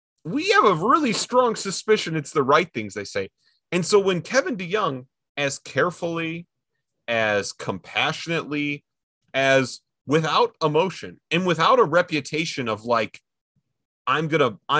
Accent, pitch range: American, 130-175 Hz